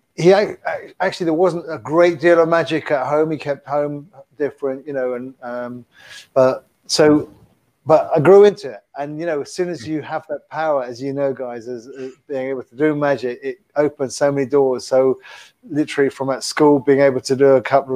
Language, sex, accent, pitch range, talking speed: English, male, British, 130-150 Hz, 205 wpm